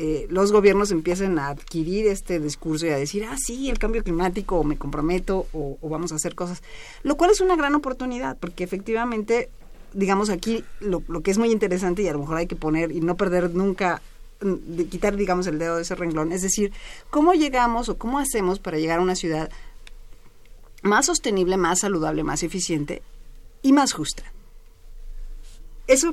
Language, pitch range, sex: Spanish, 165-225 Hz, female